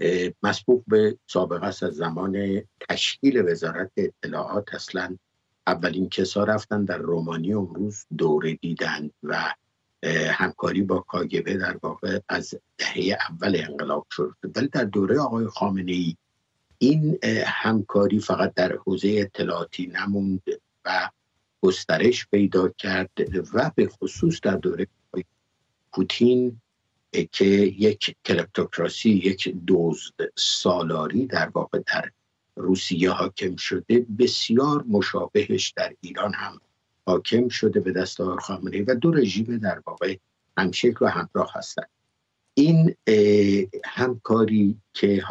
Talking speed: 115 wpm